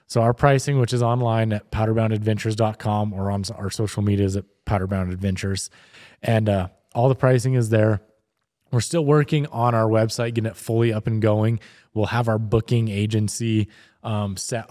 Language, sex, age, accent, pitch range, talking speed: English, male, 20-39, American, 105-125 Hz, 175 wpm